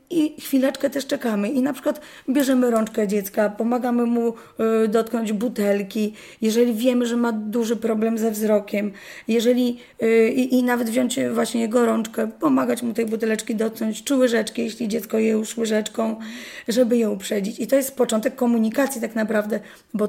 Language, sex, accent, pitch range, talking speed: Polish, female, native, 215-245 Hz, 160 wpm